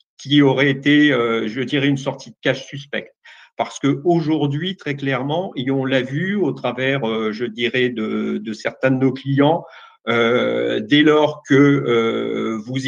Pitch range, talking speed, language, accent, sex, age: 120-145 Hz, 155 wpm, French, French, male, 50-69